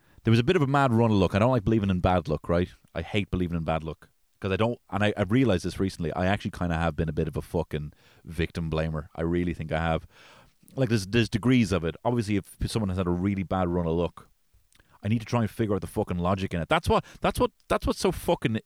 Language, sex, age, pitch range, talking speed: English, male, 30-49, 85-110 Hz, 285 wpm